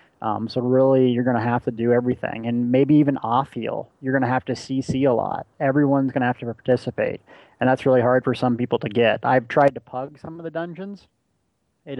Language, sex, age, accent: English, male, 30-49, American